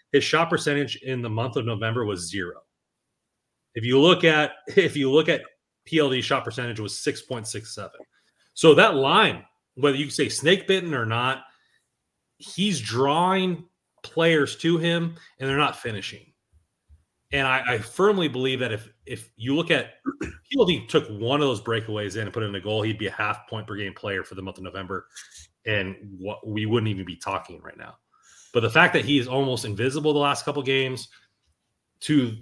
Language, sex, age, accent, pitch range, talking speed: English, male, 30-49, American, 105-145 Hz, 185 wpm